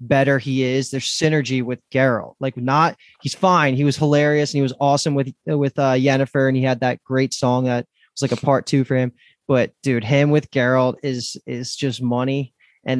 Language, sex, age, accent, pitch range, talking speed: English, male, 20-39, American, 125-140 Hz, 210 wpm